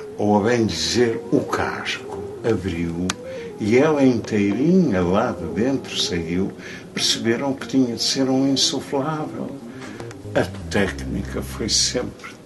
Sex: male